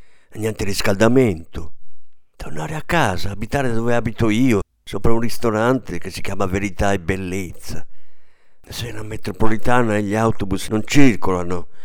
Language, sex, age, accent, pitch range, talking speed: Italian, male, 50-69, native, 90-130 Hz, 130 wpm